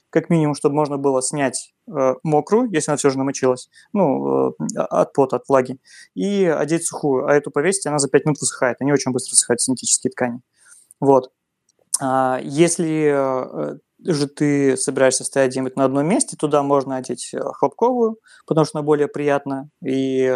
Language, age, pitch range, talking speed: Russian, 20-39, 130-155 Hz, 160 wpm